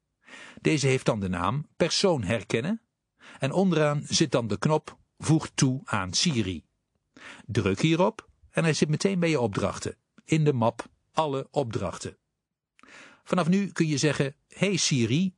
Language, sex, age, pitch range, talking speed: Dutch, male, 60-79, 115-165 Hz, 150 wpm